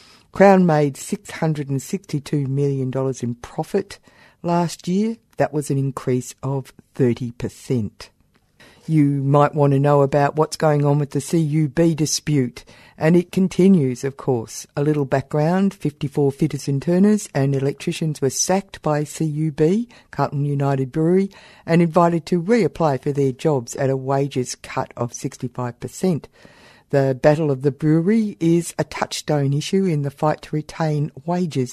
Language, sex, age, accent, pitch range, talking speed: English, female, 50-69, Australian, 135-165 Hz, 145 wpm